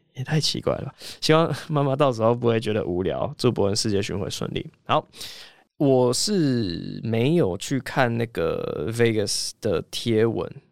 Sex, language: male, Chinese